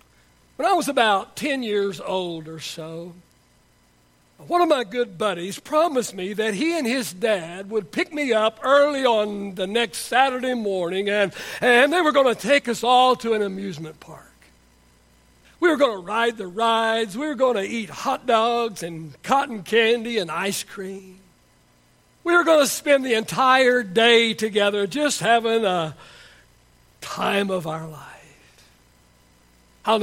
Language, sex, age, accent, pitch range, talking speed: English, male, 60-79, American, 195-255 Hz, 160 wpm